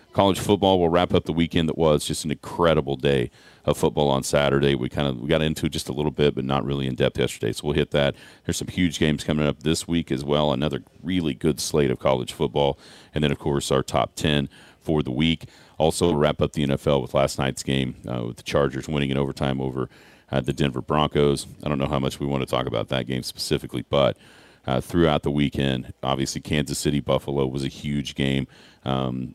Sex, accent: male, American